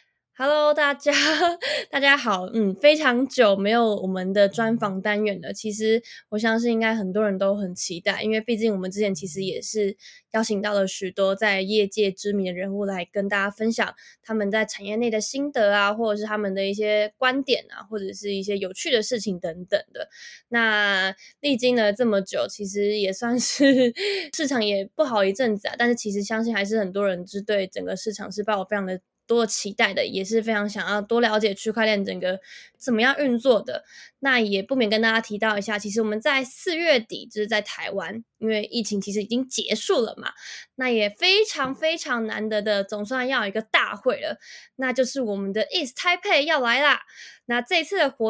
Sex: female